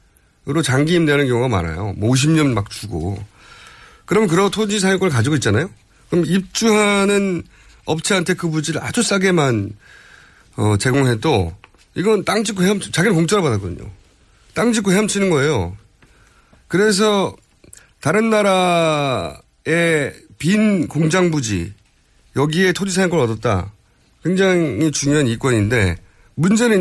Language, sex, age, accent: Korean, male, 30-49, native